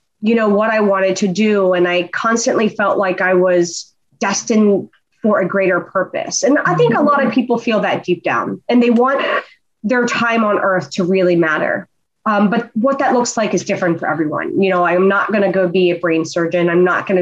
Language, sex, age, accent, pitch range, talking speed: English, female, 30-49, American, 185-240 Hz, 225 wpm